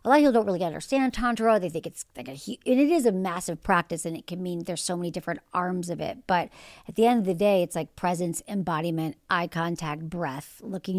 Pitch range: 170-215 Hz